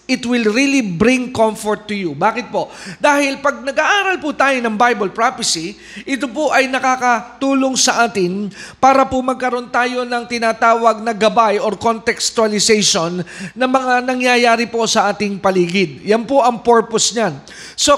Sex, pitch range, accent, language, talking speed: male, 210-255 Hz, native, Filipino, 155 wpm